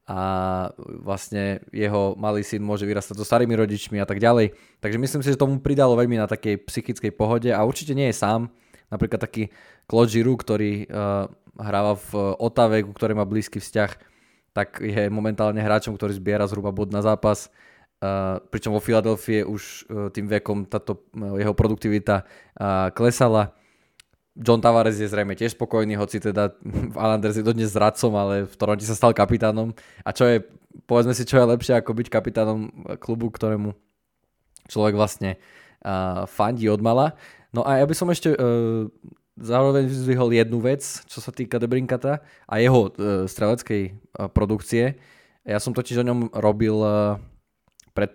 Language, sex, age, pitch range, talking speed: Slovak, male, 20-39, 105-120 Hz, 160 wpm